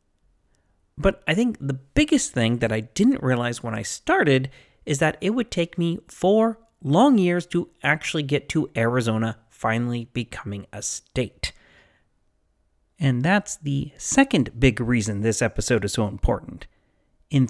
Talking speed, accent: 145 wpm, American